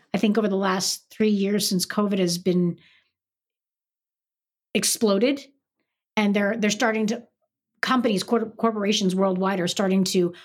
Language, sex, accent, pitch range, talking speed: English, female, American, 195-255 Hz, 130 wpm